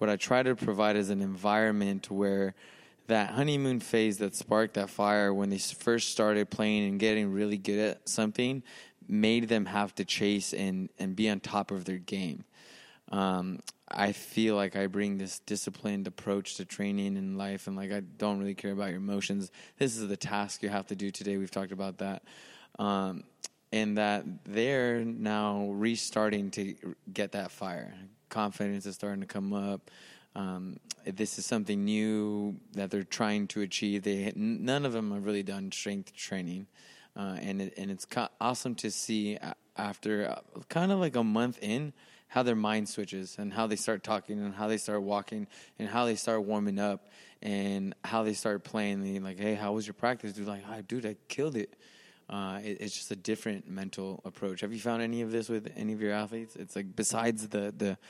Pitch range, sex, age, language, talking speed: 100-110 Hz, male, 20-39, English, 190 wpm